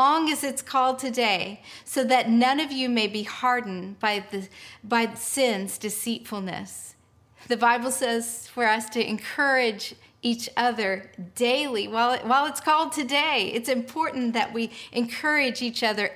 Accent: American